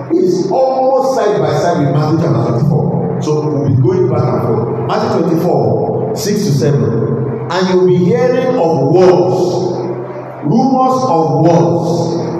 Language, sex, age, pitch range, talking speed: English, male, 50-69, 135-200 Hz, 145 wpm